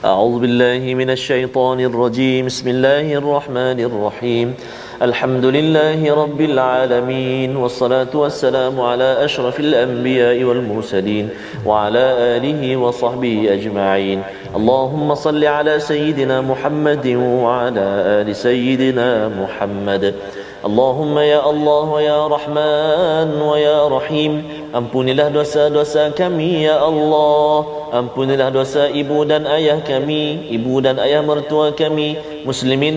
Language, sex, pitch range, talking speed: Malayalam, male, 125-155 Hz, 105 wpm